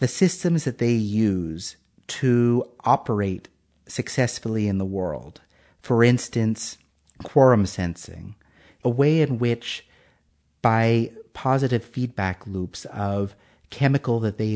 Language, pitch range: English, 100-130 Hz